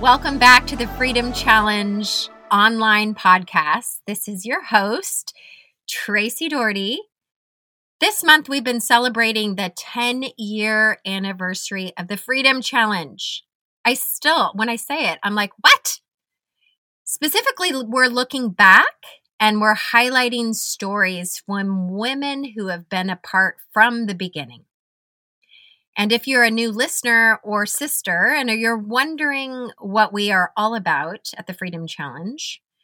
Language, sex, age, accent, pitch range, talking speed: English, female, 30-49, American, 195-250 Hz, 130 wpm